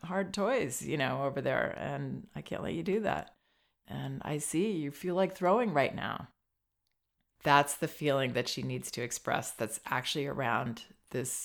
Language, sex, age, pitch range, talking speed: English, female, 30-49, 130-160 Hz, 180 wpm